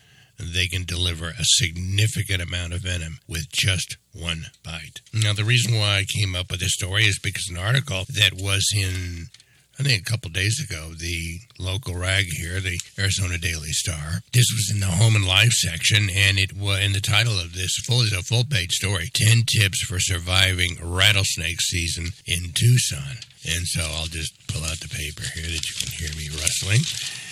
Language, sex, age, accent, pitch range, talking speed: English, male, 60-79, American, 85-110 Hz, 190 wpm